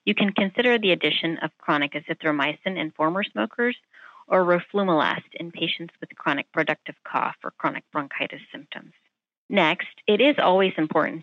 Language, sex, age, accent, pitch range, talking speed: English, female, 30-49, American, 150-185 Hz, 150 wpm